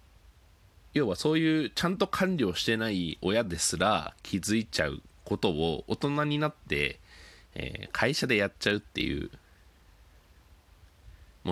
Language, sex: Japanese, male